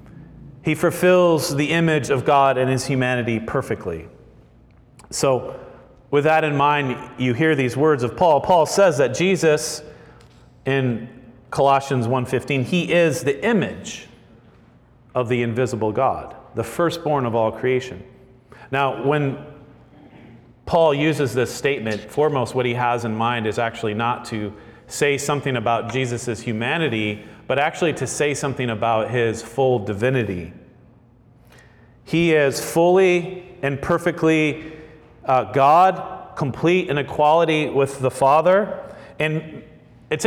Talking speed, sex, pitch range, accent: 130 wpm, male, 120-155 Hz, American